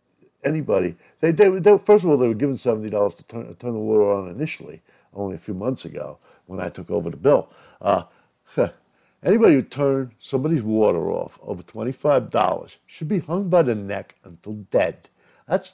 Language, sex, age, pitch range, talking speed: English, male, 60-79, 95-130 Hz, 185 wpm